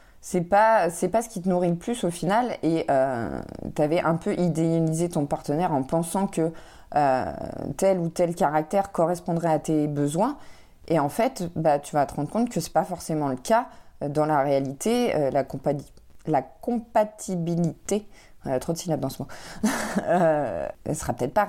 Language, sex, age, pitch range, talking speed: French, female, 20-39, 150-190 Hz, 190 wpm